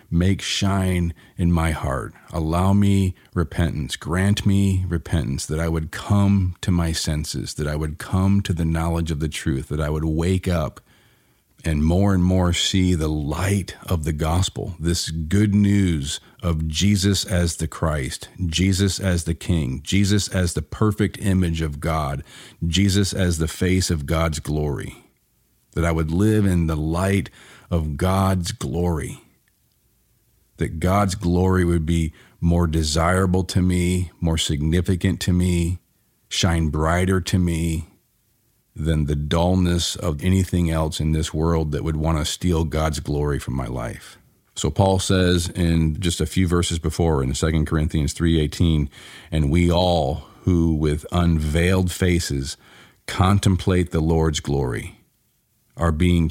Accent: American